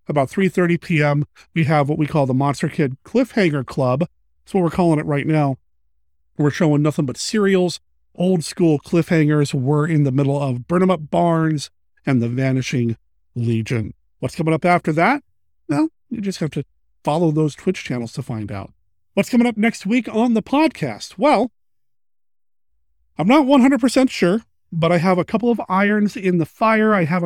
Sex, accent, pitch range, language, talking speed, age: male, American, 125-180 Hz, English, 180 wpm, 40-59